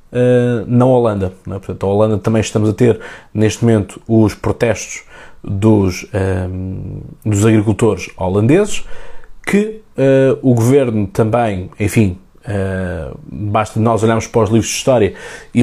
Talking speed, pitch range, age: 140 wpm, 95-120 Hz, 20-39